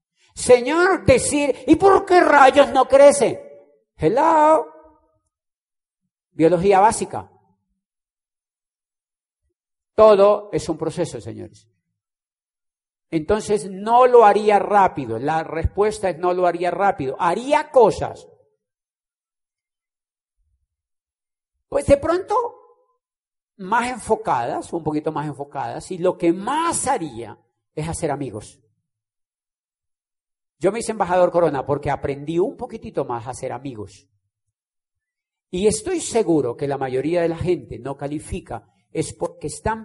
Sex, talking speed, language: male, 110 wpm, Spanish